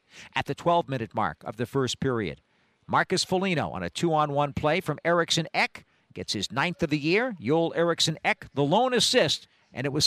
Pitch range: 125-170 Hz